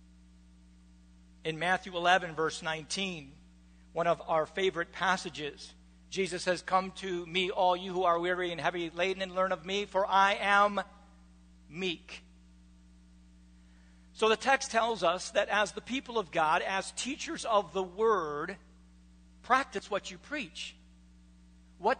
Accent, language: American, English